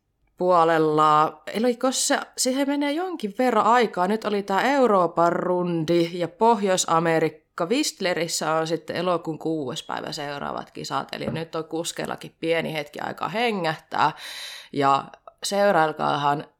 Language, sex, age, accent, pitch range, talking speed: Finnish, female, 20-39, native, 150-190 Hz, 120 wpm